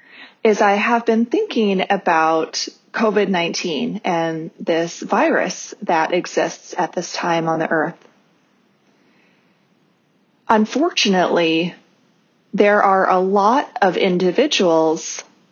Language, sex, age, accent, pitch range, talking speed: English, female, 30-49, American, 180-225 Hz, 95 wpm